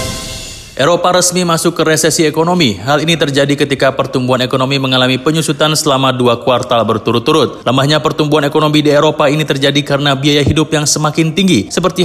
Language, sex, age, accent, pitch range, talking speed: Indonesian, male, 30-49, native, 130-155 Hz, 160 wpm